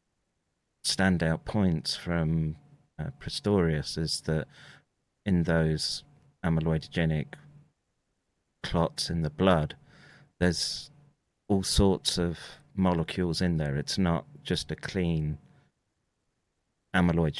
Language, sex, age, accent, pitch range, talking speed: English, male, 30-49, British, 80-100 Hz, 95 wpm